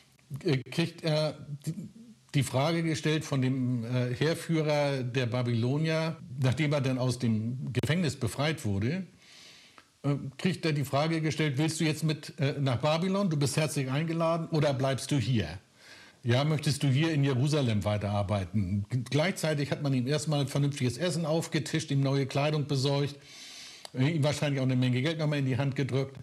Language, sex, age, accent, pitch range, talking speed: German, male, 60-79, German, 125-155 Hz, 160 wpm